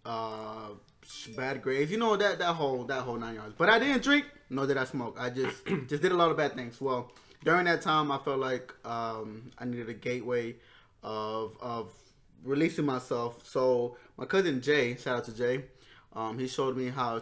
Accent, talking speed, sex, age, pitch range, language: American, 200 wpm, male, 20-39, 115-135 Hz, English